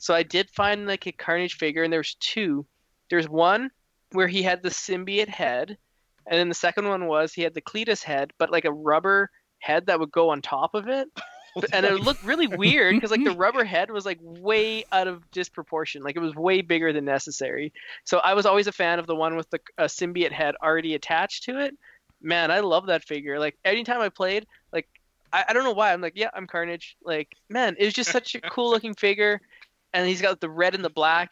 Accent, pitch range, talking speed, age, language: American, 160-195 Hz, 230 wpm, 20-39, English